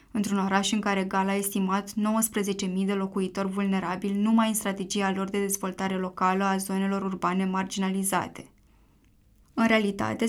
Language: Romanian